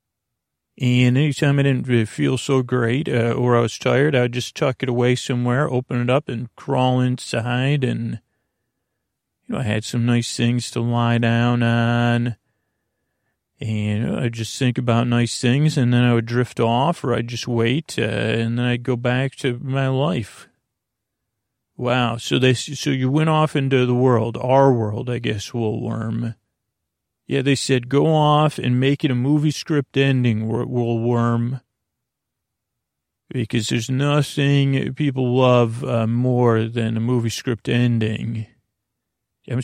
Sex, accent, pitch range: male, American, 115-130 Hz